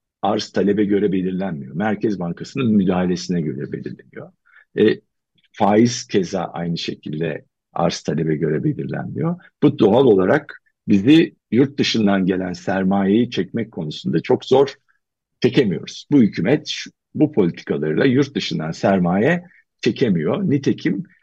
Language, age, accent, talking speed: Turkish, 50-69, native, 115 wpm